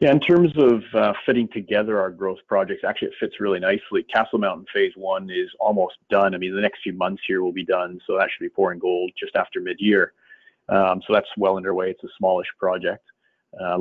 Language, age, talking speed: English, 30-49, 220 wpm